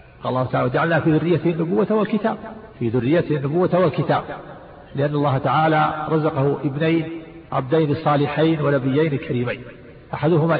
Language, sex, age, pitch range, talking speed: Arabic, male, 50-69, 140-180 Hz, 120 wpm